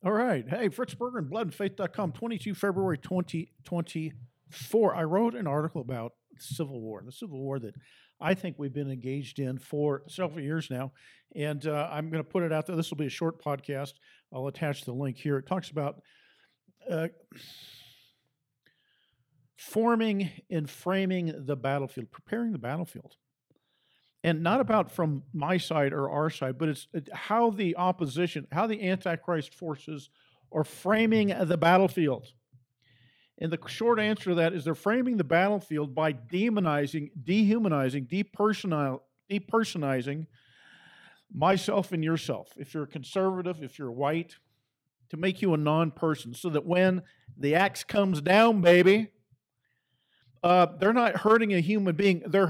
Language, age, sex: English, 50-69, male